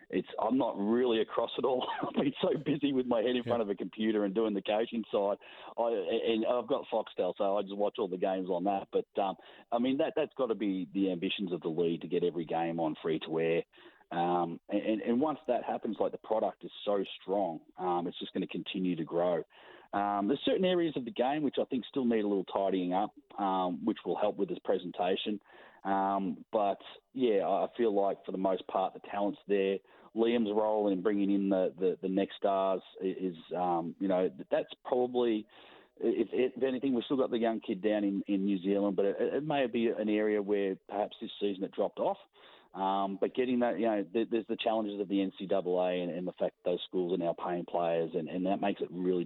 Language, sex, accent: English, male, Australian